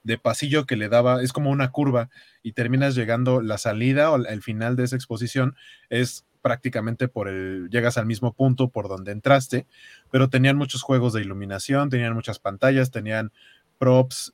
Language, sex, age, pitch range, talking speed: Spanish, male, 30-49, 110-135 Hz, 175 wpm